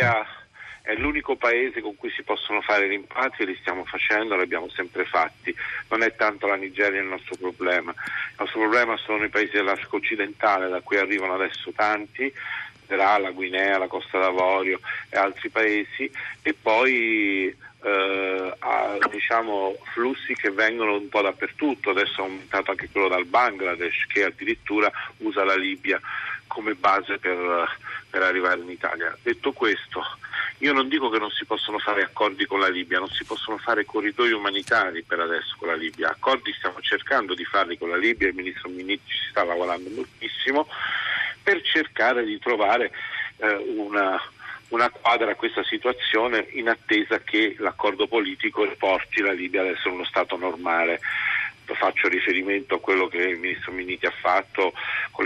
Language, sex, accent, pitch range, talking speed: Italian, male, native, 95-145 Hz, 165 wpm